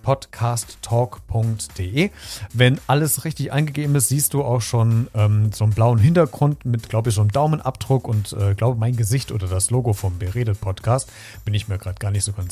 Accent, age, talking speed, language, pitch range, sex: German, 40-59, 185 wpm, German, 105-135 Hz, male